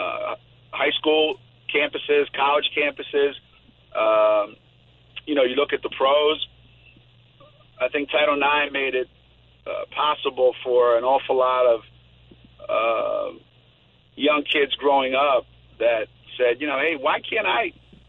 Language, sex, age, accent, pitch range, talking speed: English, male, 50-69, American, 120-155 Hz, 135 wpm